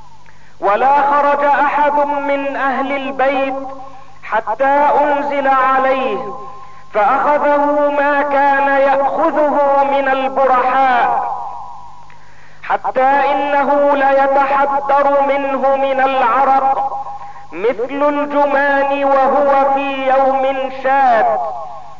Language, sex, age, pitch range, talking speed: Arabic, male, 40-59, 265-285 Hz, 75 wpm